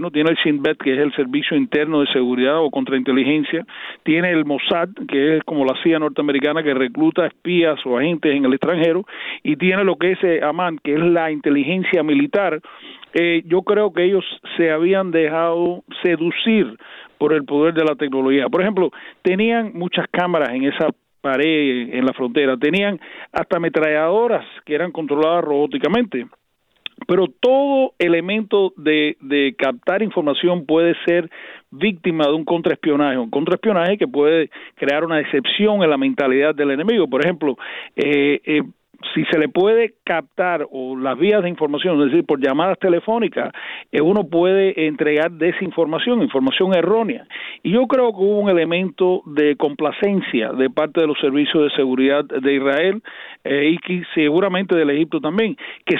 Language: Spanish